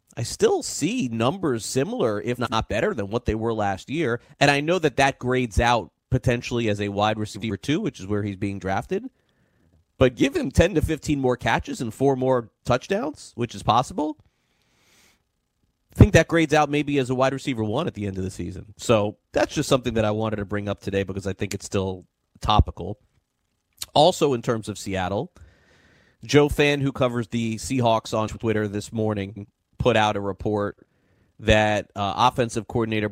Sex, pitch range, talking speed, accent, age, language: male, 100-130 Hz, 190 wpm, American, 30-49, English